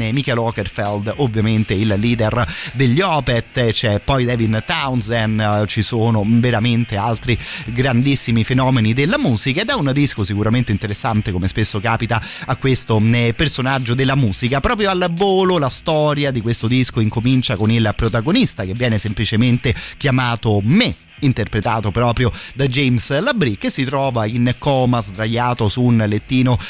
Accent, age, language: native, 30-49, Italian